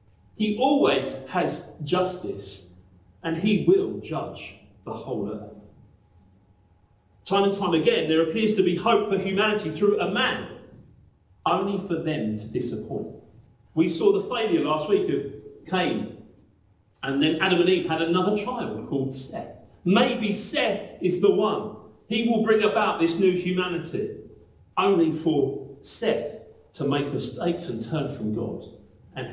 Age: 40-59